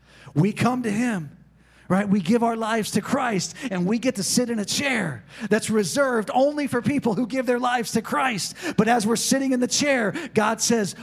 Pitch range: 155-230 Hz